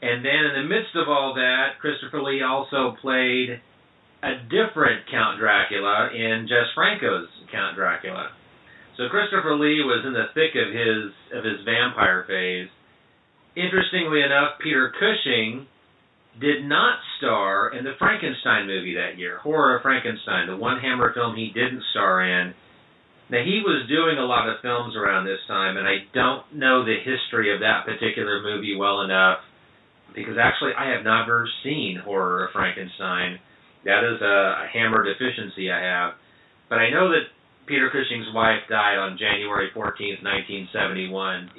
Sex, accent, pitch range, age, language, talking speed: male, American, 95-125 Hz, 40-59, English, 160 wpm